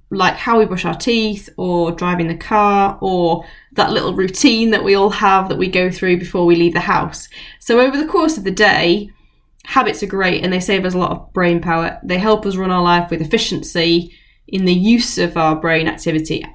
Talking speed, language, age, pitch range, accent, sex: 220 wpm, English, 10-29, 170-210 Hz, British, female